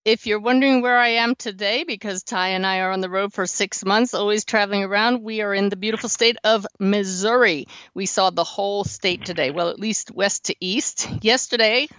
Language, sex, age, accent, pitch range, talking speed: English, female, 50-69, American, 185-225 Hz, 210 wpm